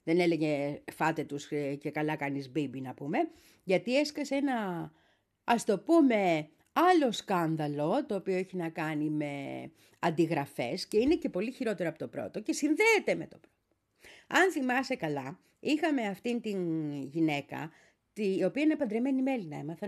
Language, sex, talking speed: Greek, female, 160 wpm